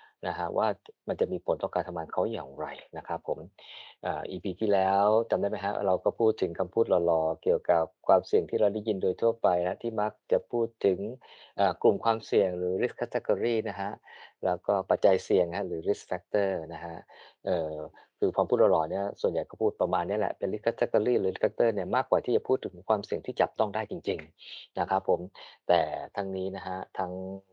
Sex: male